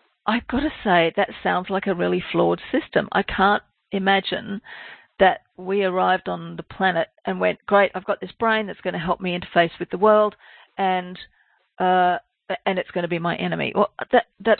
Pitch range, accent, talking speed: 175-205 Hz, Australian, 195 wpm